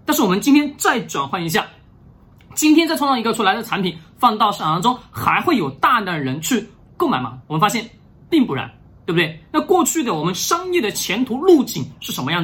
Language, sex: Chinese, male